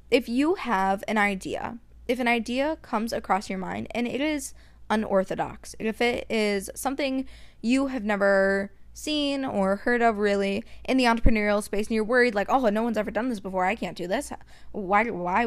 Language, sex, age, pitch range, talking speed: English, female, 20-39, 195-235 Hz, 190 wpm